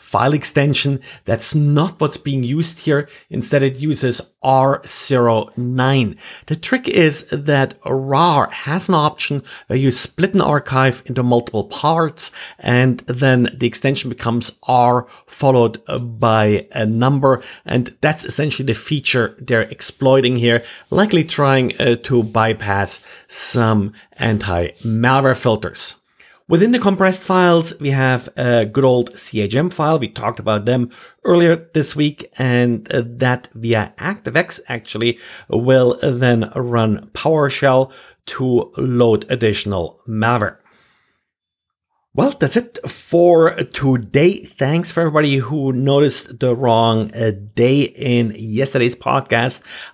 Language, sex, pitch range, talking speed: English, male, 115-145 Hz, 120 wpm